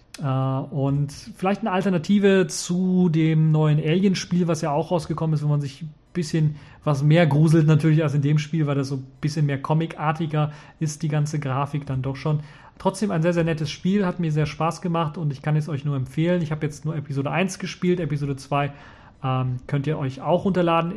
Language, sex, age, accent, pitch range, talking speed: German, male, 30-49, German, 135-160 Hz, 210 wpm